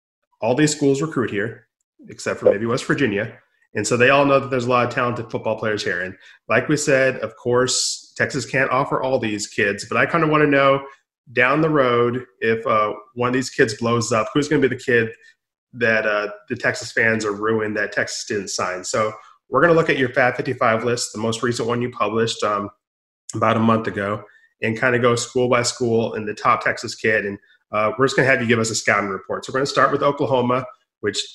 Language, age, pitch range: English, 30-49, 110-130 Hz